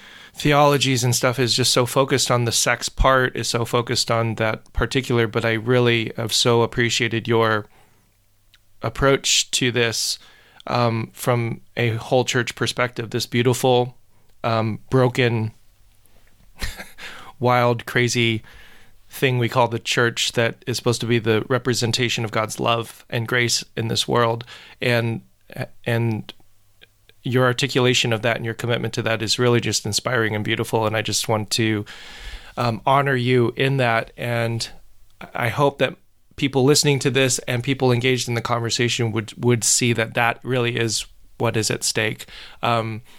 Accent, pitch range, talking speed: American, 115-125 Hz, 155 wpm